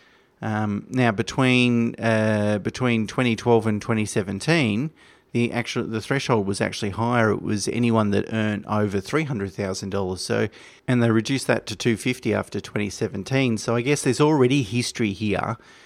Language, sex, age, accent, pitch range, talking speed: English, male, 30-49, Australian, 105-120 Hz, 165 wpm